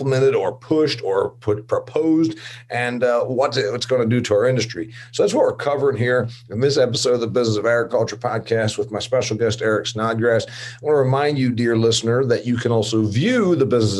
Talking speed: 225 wpm